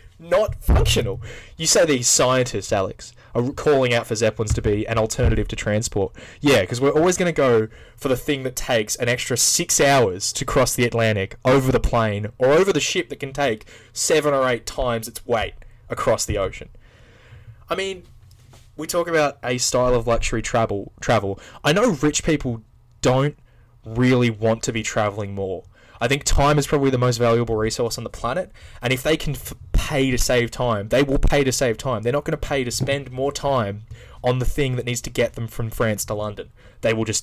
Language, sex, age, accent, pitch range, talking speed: English, male, 20-39, Australian, 110-135 Hz, 210 wpm